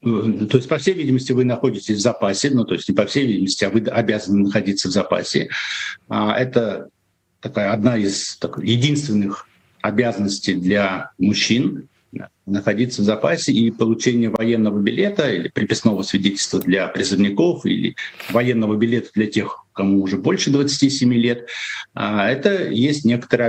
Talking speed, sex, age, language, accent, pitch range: 145 wpm, male, 60-79, Russian, native, 105-130 Hz